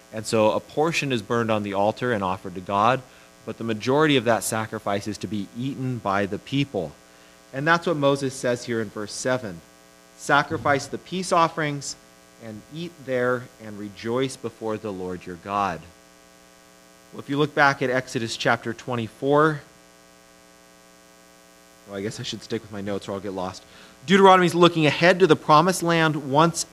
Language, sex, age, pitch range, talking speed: English, male, 30-49, 100-130 Hz, 175 wpm